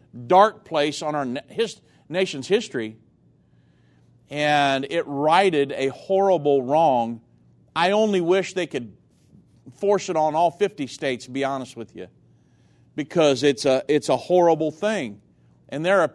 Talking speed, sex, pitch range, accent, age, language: 140 wpm, male, 130-195 Hz, American, 40-59, English